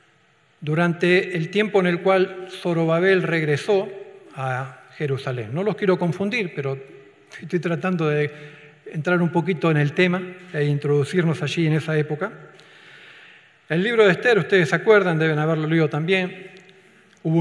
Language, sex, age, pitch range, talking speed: Spanish, male, 50-69, 145-180 Hz, 145 wpm